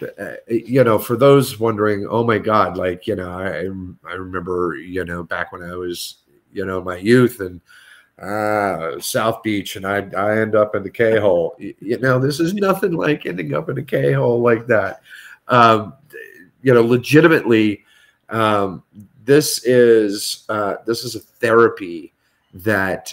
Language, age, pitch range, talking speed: English, 40-59, 90-120 Hz, 170 wpm